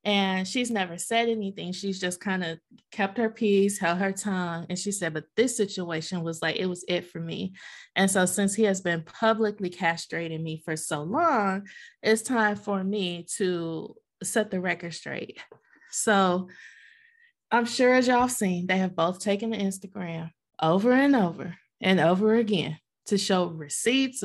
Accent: American